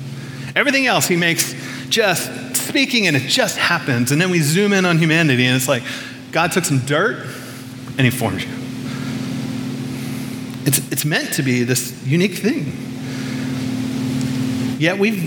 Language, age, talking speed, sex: English, 30-49, 150 wpm, male